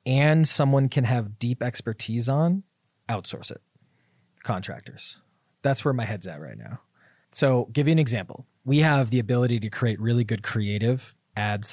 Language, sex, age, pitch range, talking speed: English, male, 20-39, 105-135 Hz, 165 wpm